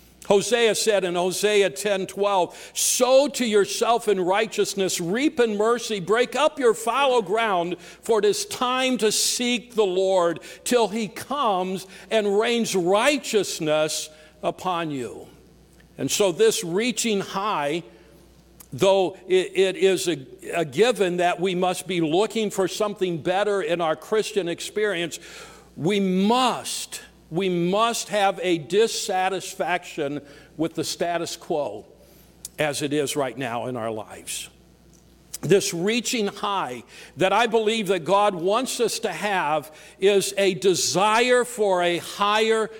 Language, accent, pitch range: English, American, 175-220 Hz